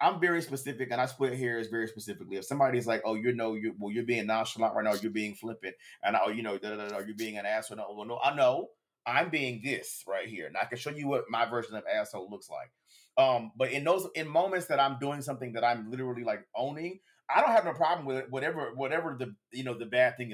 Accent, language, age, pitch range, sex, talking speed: American, English, 30-49, 110-145 Hz, male, 250 wpm